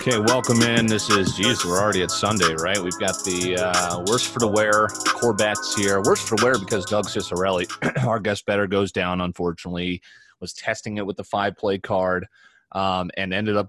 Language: English